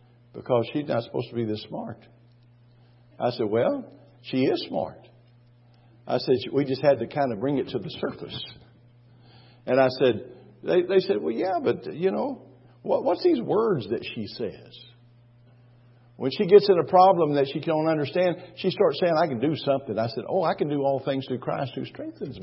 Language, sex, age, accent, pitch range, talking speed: English, male, 50-69, American, 120-175 Hz, 195 wpm